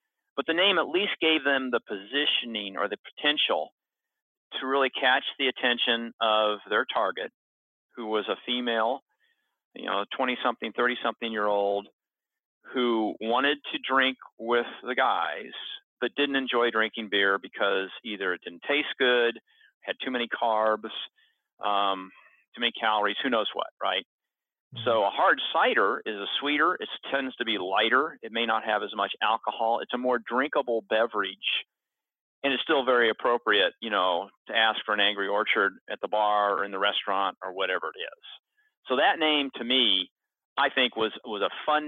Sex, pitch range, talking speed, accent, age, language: male, 110-140 Hz, 170 wpm, American, 40-59, English